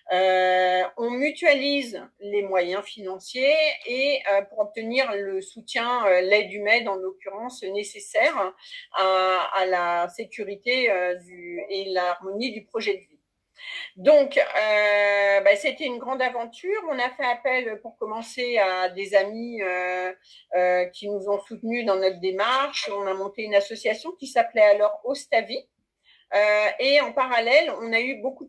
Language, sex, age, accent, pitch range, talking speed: French, female, 50-69, French, 195-265 Hz, 150 wpm